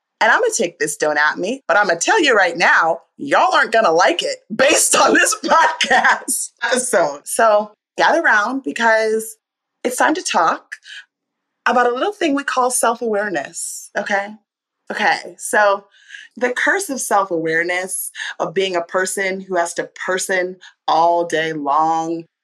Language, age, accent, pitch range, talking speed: English, 30-49, American, 170-250 Hz, 165 wpm